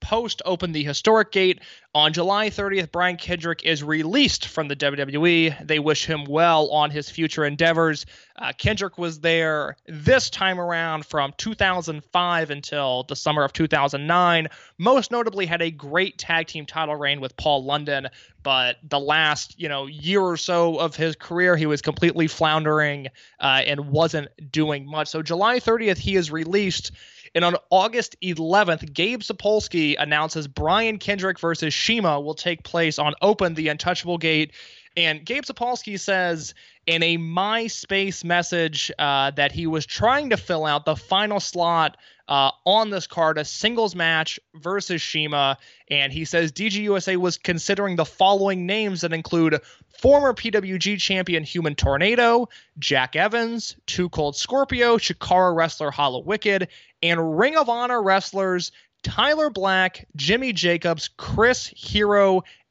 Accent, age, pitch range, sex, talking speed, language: American, 20-39, 150-195 Hz, male, 155 wpm, English